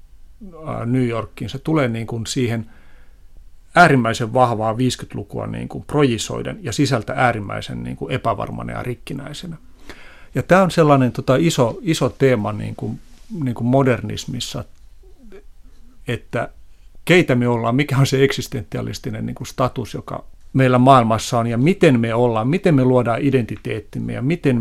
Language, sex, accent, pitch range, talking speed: Finnish, male, native, 115-140 Hz, 140 wpm